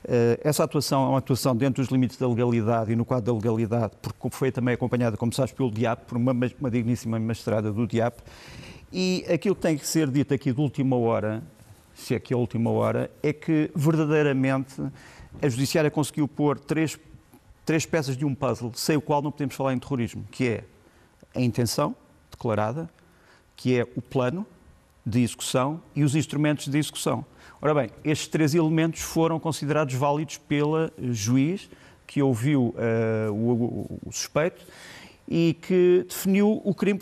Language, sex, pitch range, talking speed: Portuguese, male, 120-155 Hz, 170 wpm